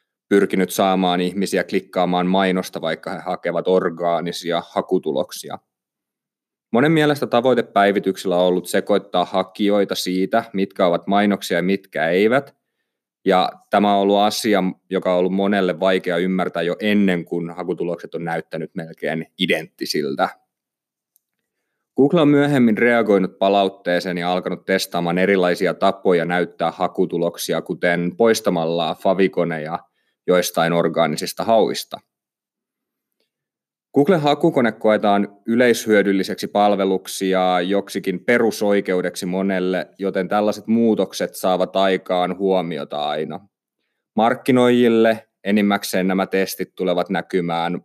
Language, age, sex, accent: Finnish, 30-49, male, native